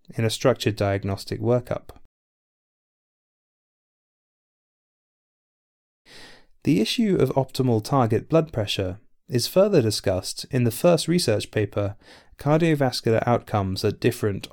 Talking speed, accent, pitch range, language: 100 wpm, British, 100-125 Hz, English